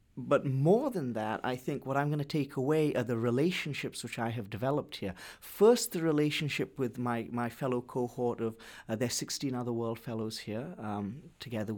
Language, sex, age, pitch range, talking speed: English, male, 30-49, 120-150 Hz, 195 wpm